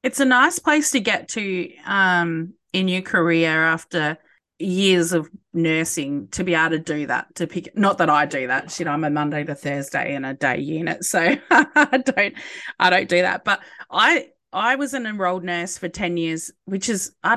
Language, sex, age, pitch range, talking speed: English, female, 20-39, 150-185 Hz, 205 wpm